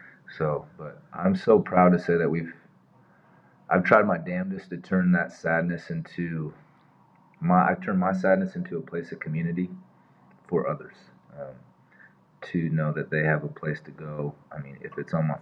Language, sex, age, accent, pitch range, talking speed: English, male, 30-49, American, 80-100 Hz, 180 wpm